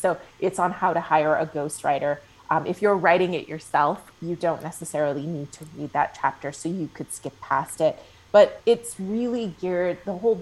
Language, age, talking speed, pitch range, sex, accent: English, 30-49, 190 wpm, 155-190 Hz, female, American